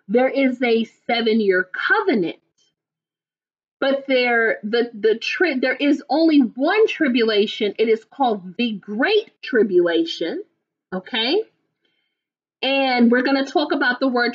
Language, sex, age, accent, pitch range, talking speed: English, female, 30-49, American, 225-310 Hz, 115 wpm